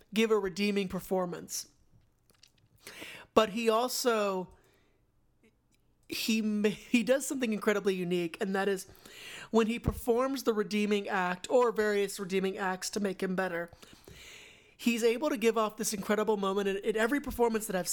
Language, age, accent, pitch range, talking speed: English, 30-49, American, 190-230 Hz, 145 wpm